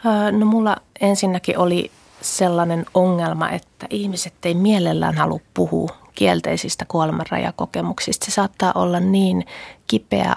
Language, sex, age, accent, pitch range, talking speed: Finnish, female, 30-49, native, 165-185 Hz, 110 wpm